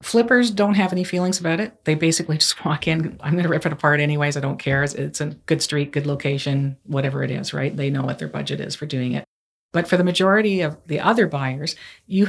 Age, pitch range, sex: 40-59, 150-175 Hz, female